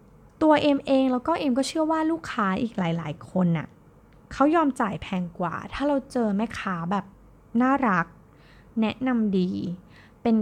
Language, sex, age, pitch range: Thai, female, 20-39, 180-255 Hz